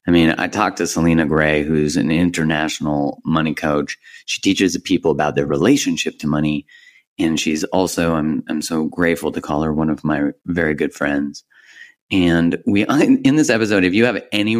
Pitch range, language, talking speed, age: 80-90 Hz, English, 185 wpm, 30-49